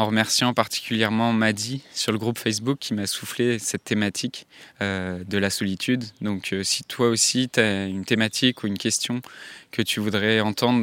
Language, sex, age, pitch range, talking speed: French, male, 20-39, 100-115 Hz, 170 wpm